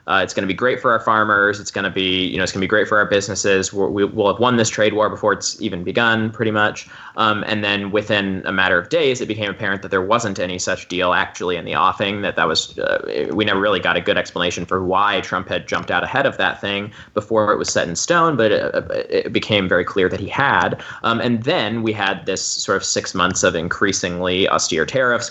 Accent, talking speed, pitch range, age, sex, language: American, 255 wpm, 95-120 Hz, 20-39, male, English